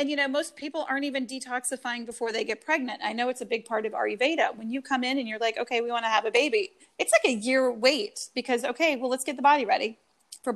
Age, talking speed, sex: 30-49, 275 wpm, female